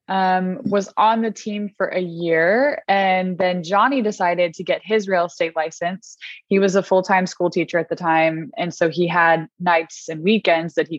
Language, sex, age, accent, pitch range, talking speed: English, female, 20-39, American, 175-210 Hz, 195 wpm